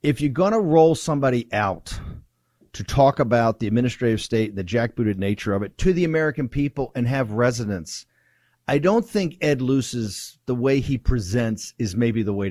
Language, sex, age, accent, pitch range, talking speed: English, male, 50-69, American, 115-155 Hz, 185 wpm